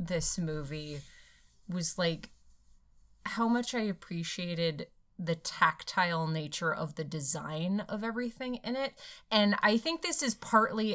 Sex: female